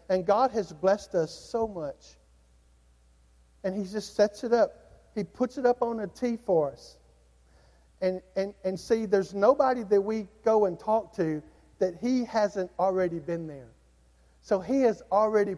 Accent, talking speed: American, 170 wpm